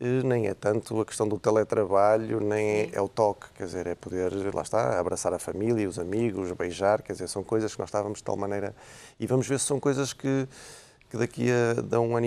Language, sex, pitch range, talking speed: Portuguese, male, 95-115 Hz, 220 wpm